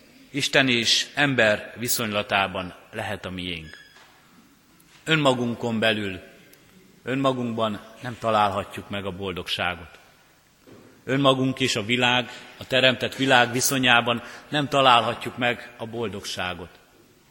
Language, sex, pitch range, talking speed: Hungarian, male, 105-125 Hz, 95 wpm